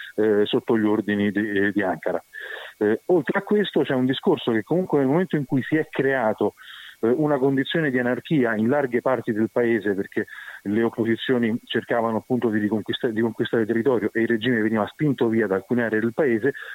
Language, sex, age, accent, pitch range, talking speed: Italian, male, 40-59, native, 110-140 Hz, 200 wpm